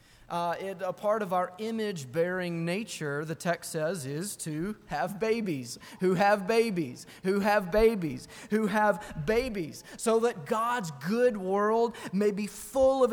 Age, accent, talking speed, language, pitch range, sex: 30-49, American, 150 wpm, English, 165-220 Hz, male